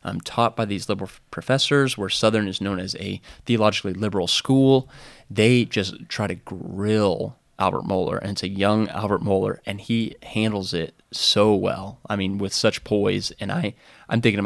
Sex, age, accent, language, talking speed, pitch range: male, 20-39, American, English, 185 wpm, 100-115 Hz